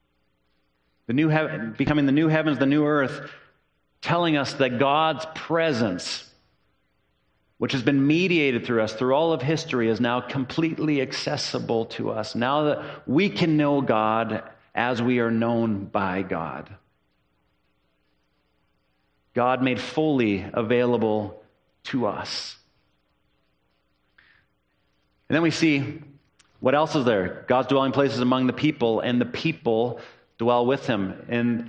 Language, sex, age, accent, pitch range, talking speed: English, male, 40-59, American, 105-145 Hz, 135 wpm